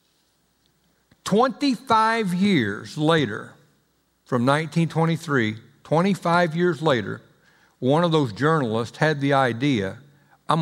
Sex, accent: male, American